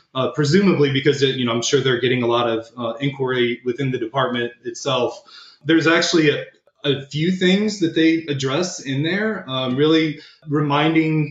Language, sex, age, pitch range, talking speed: English, male, 20-39, 125-150 Hz, 175 wpm